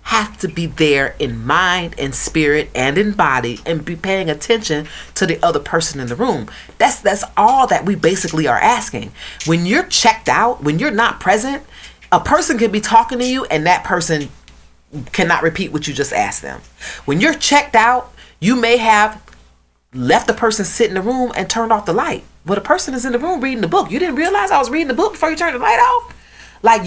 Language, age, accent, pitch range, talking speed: English, 30-49, American, 165-245 Hz, 220 wpm